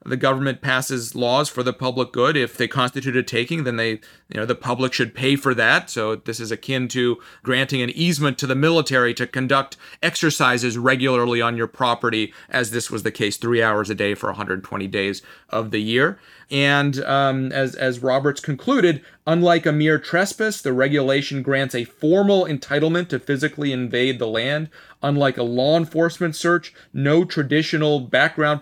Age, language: 30-49, English